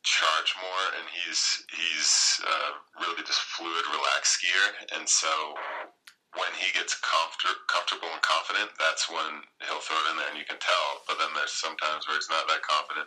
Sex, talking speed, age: male, 185 wpm, 30-49